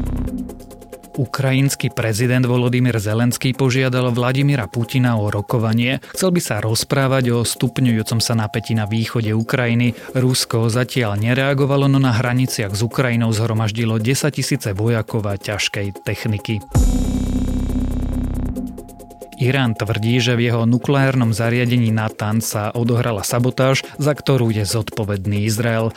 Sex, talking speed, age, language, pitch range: male, 120 wpm, 30-49, Slovak, 110-130 Hz